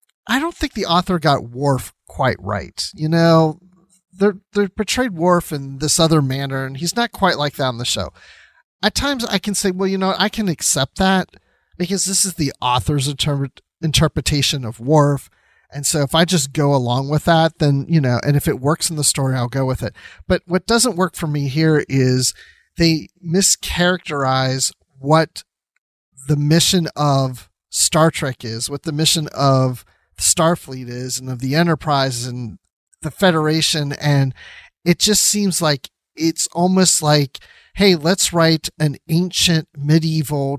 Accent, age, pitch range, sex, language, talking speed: American, 40-59, 135-170 Hz, male, English, 170 wpm